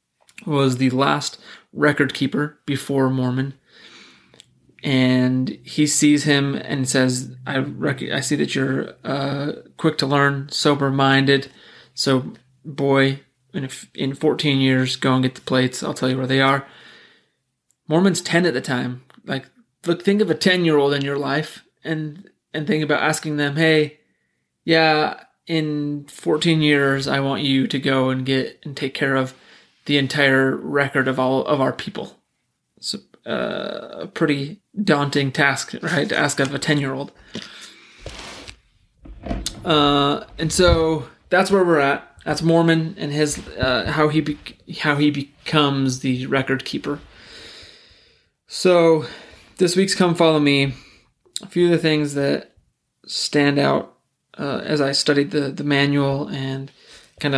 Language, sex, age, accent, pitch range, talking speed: English, male, 30-49, American, 135-155 Hz, 150 wpm